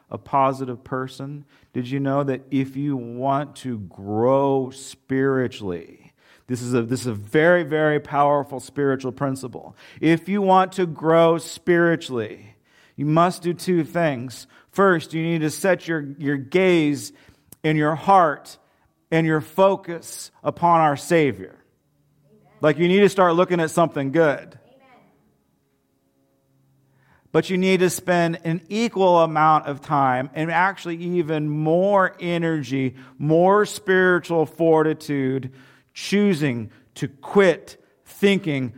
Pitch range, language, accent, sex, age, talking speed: 130-175 Hz, English, American, male, 40-59, 130 wpm